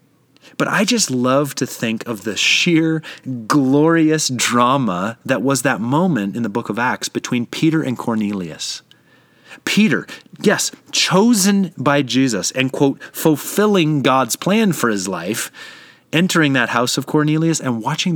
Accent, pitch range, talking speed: American, 115-165 Hz, 145 wpm